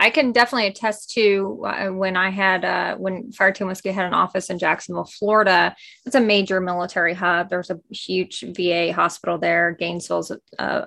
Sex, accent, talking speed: female, American, 175 wpm